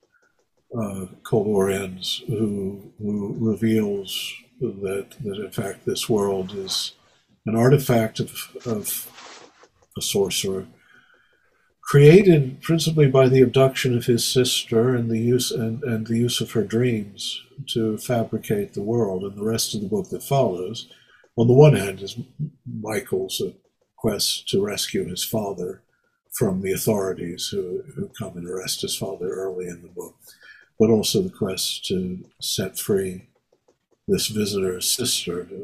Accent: American